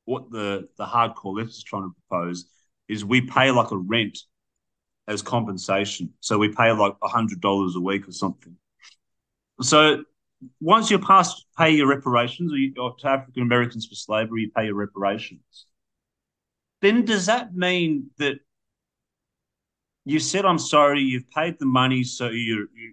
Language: English